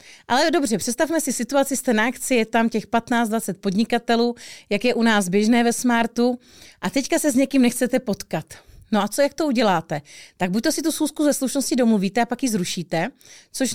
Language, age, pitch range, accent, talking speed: Czech, 30-49, 200-240 Hz, native, 200 wpm